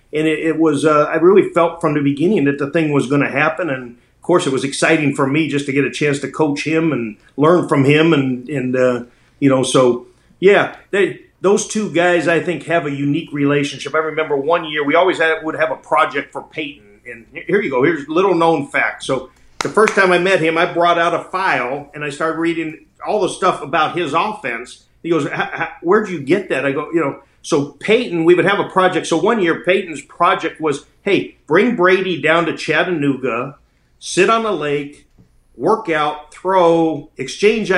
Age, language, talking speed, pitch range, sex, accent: 40-59, English, 220 wpm, 145-180 Hz, male, American